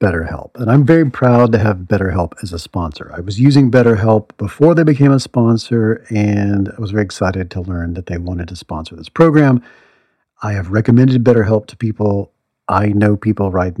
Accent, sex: American, male